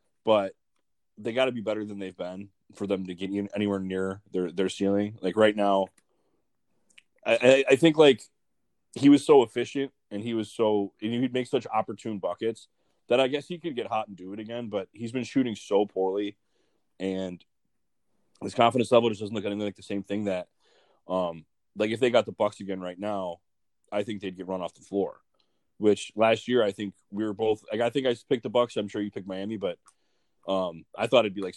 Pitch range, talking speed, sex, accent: 100-120 Hz, 215 wpm, male, American